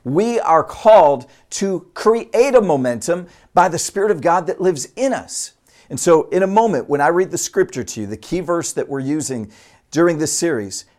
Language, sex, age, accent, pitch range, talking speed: English, male, 50-69, American, 125-175 Hz, 200 wpm